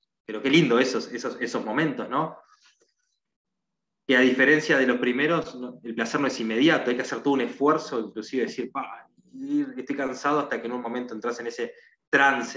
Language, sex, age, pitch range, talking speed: Spanish, male, 20-39, 120-155 Hz, 180 wpm